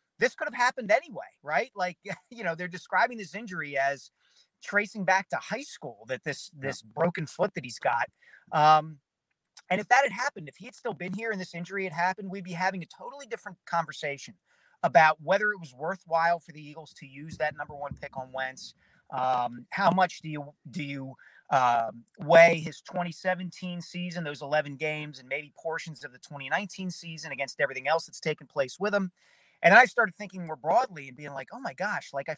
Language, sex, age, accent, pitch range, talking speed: English, male, 40-59, American, 150-195 Hz, 205 wpm